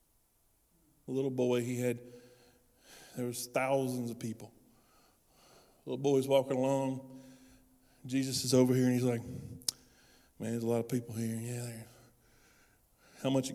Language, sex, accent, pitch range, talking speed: English, male, American, 115-150 Hz, 150 wpm